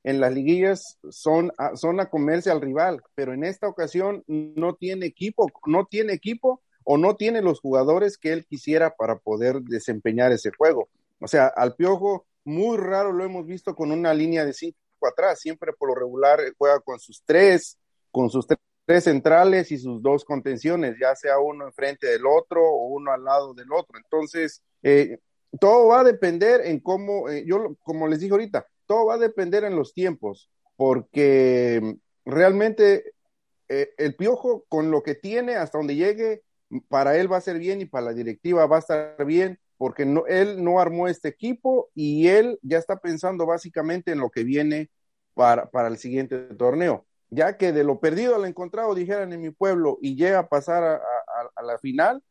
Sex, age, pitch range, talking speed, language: male, 40-59, 140-195 Hz, 185 wpm, Spanish